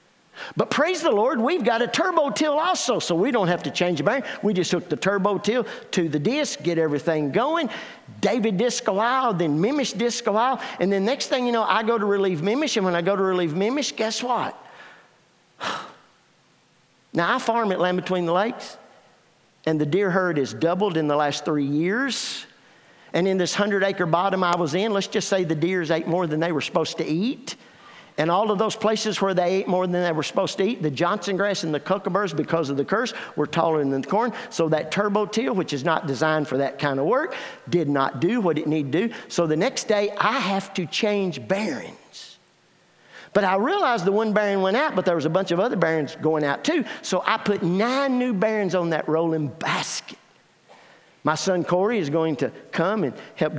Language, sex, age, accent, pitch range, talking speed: English, male, 50-69, American, 160-220 Hz, 215 wpm